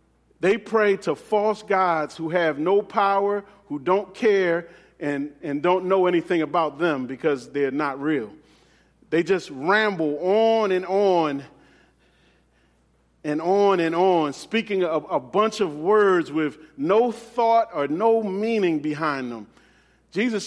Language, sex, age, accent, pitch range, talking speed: English, male, 40-59, American, 160-210 Hz, 140 wpm